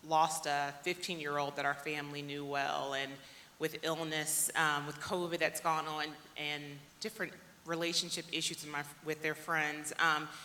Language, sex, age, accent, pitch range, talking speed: English, female, 30-49, American, 155-180 Hz, 165 wpm